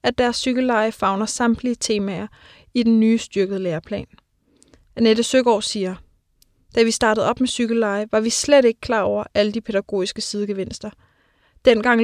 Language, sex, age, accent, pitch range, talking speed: English, female, 20-39, Danish, 205-240 Hz, 155 wpm